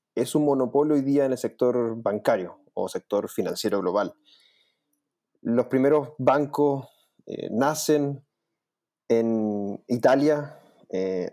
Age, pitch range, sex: 30-49, 110-145 Hz, male